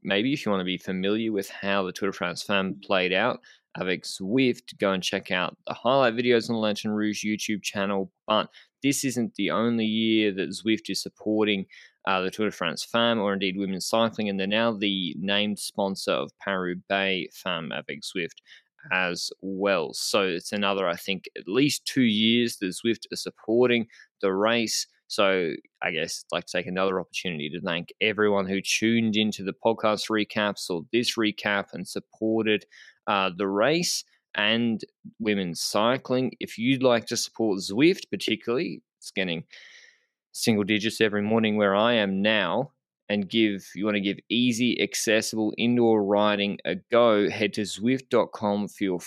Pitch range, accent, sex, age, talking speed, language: 95-115 Hz, Australian, male, 20-39, 175 wpm, English